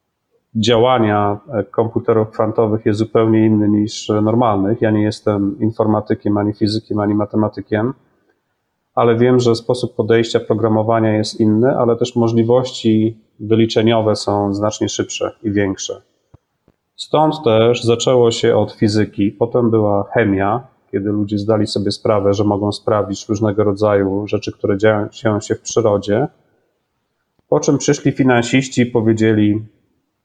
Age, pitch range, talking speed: 30-49, 105-120 Hz, 125 wpm